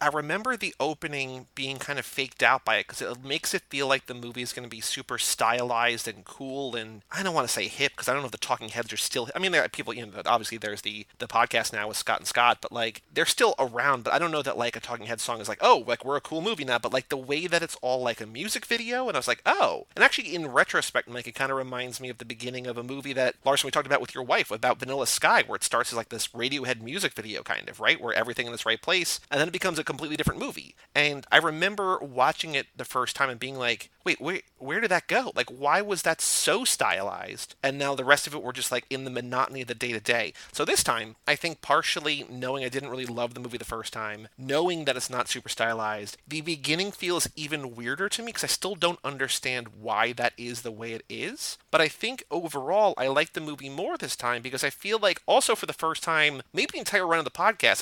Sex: male